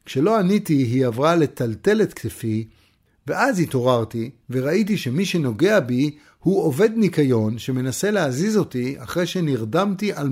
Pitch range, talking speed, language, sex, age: 125-185 Hz, 130 wpm, Hebrew, male, 50-69